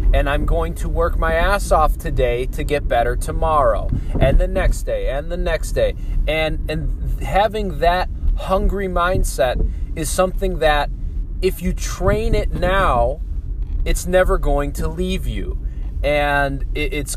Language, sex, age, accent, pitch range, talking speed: English, male, 20-39, American, 120-160 Hz, 150 wpm